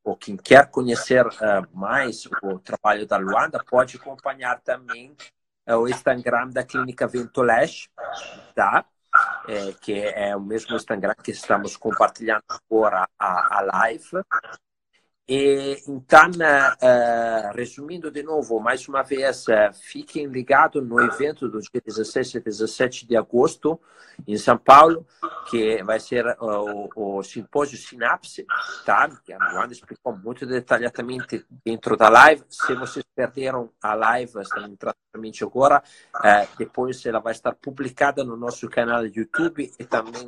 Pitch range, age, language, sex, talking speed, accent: 115-140 Hz, 50-69, Portuguese, male, 135 wpm, Italian